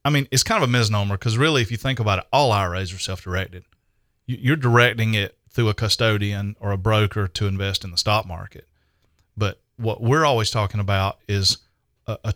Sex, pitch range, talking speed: male, 100-120 Hz, 205 wpm